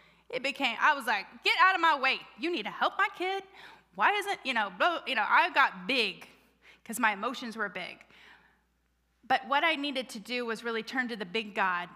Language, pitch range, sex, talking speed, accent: English, 215-300 Hz, female, 215 wpm, American